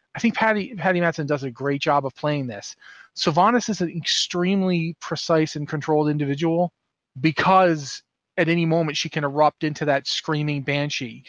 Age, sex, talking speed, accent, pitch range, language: 30-49, male, 165 wpm, American, 150-175 Hz, English